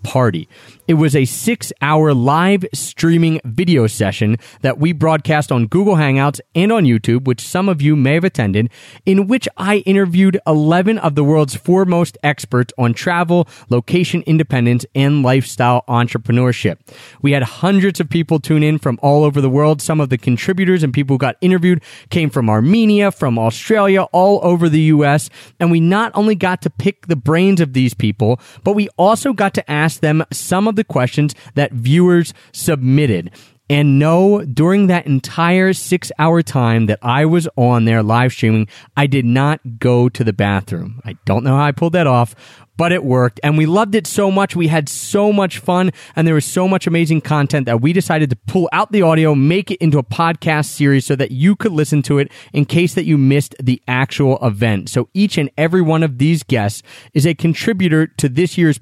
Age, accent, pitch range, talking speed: 30-49, American, 125-170 Hz, 195 wpm